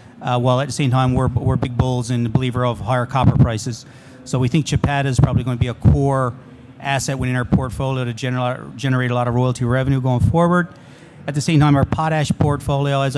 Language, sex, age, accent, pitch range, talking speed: English, male, 40-59, American, 125-140 Hz, 225 wpm